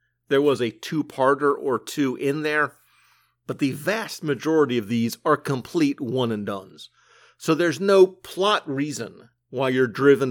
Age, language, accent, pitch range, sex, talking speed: 50-69, English, American, 120-150 Hz, male, 145 wpm